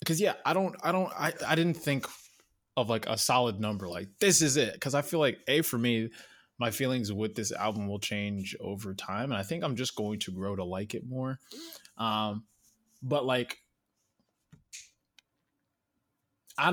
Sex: male